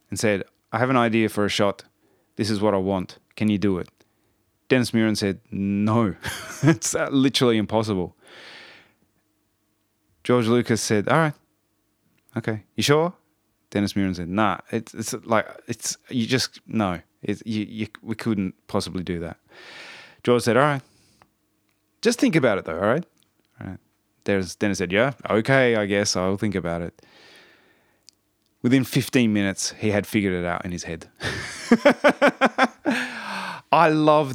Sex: male